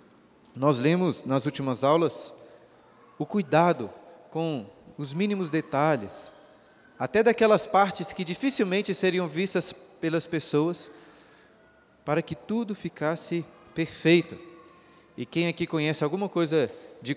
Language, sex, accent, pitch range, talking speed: Portuguese, male, Brazilian, 140-185 Hz, 110 wpm